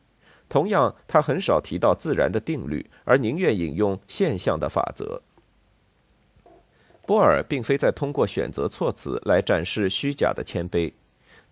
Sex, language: male, Chinese